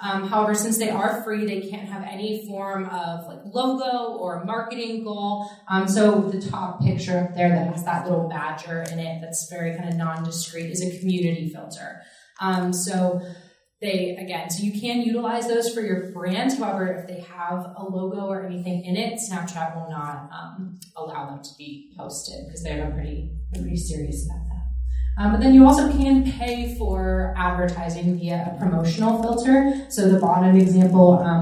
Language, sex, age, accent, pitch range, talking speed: English, female, 20-39, American, 165-200 Hz, 185 wpm